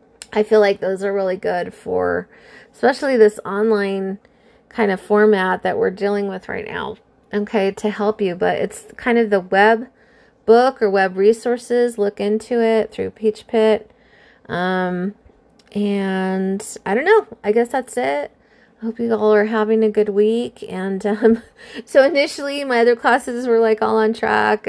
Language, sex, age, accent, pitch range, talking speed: English, female, 30-49, American, 200-235 Hz, 170 wpm